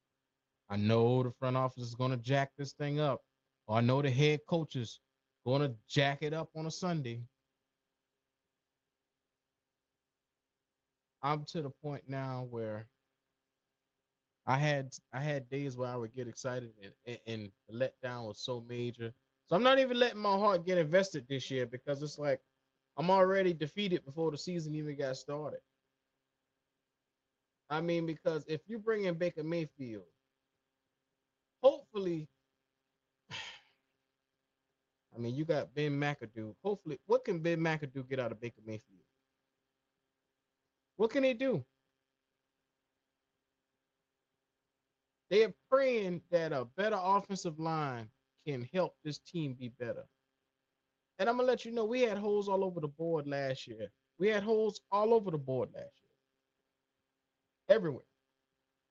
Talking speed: 145 wpm